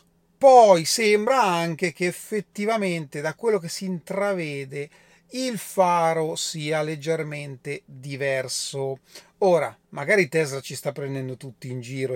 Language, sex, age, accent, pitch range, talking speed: Italian, male, 30-49, native, 145-190 Hz, 120 wpm